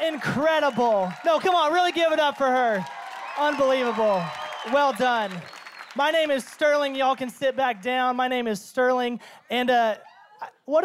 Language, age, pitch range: English, 20-39, 200-250 Hz